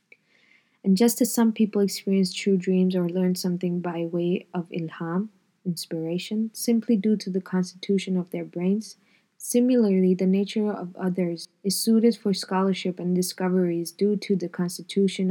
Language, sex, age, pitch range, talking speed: English, female, 20-39, 175-195 Hz, 155 wpm